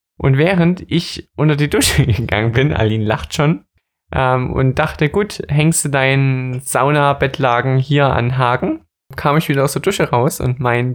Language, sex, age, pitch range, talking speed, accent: German, male, 20-39, 120-155 Hz, 170 wpm, German